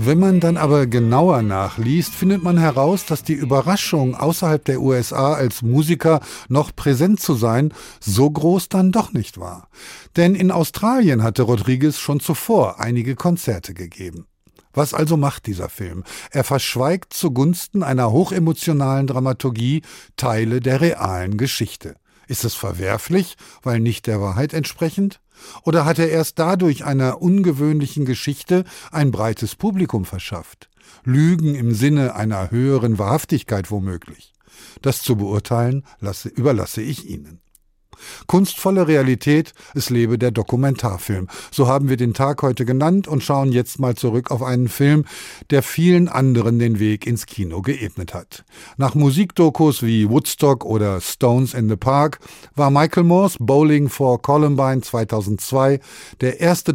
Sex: male